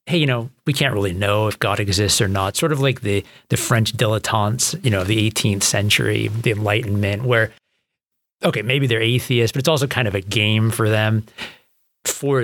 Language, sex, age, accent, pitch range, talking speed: English, male, 40-59, American, 105-130 Hz, 205 wpm